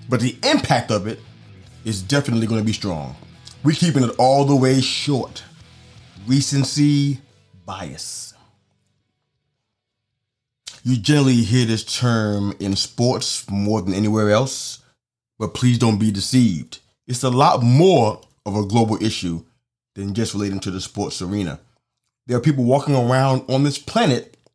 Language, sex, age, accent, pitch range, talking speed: English, male, 30-49, American, 105-130 Hz, 140 wpm